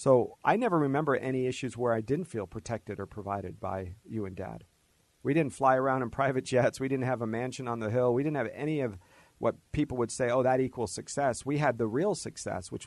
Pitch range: 105-130 Hz